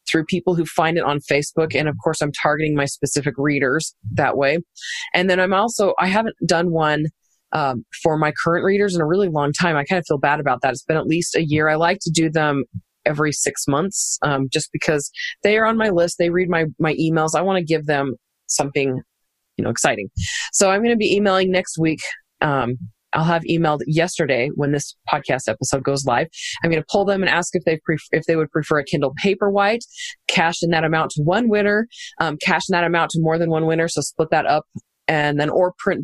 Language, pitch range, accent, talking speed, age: English, 150-180 Hz, American, 230 wpm, 20-39